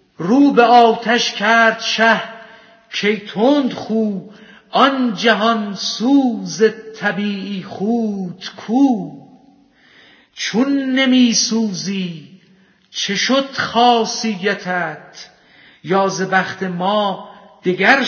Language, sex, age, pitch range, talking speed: Persian, female, 50-69, 195-235 Hz, 80 wpm